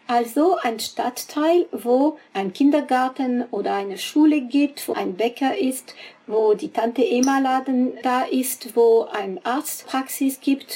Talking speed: 135 wpm